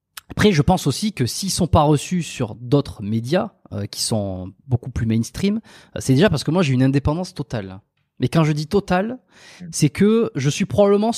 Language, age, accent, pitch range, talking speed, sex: French, 20-39, French, 120-165 Hz, 205 wpm, male